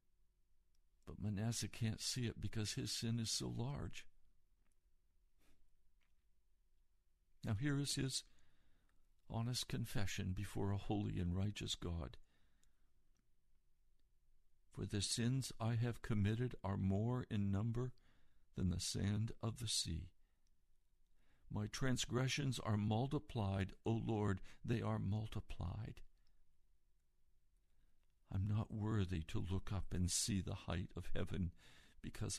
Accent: American